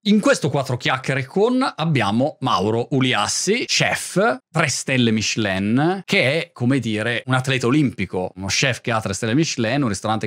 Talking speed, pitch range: 165 wpm, 105-135 Hz